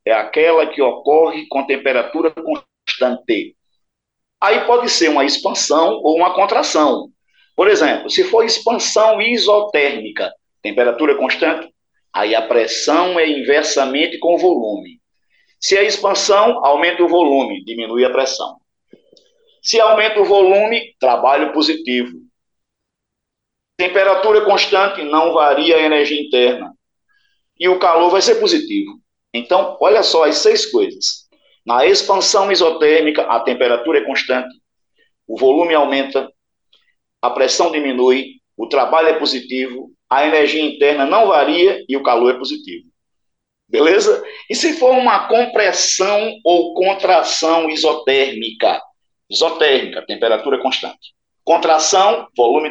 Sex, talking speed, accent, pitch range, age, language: male, 120 wpm, Brazilian, 145-230 Hz, 50-69, Portuguese